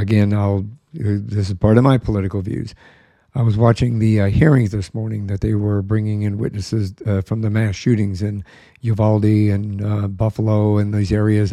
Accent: American